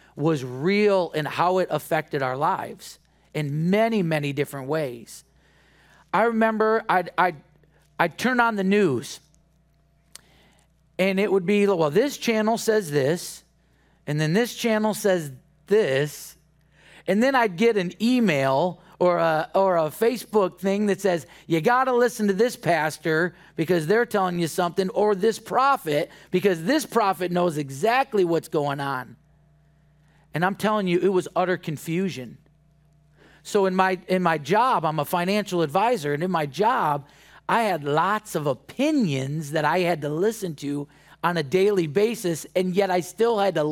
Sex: male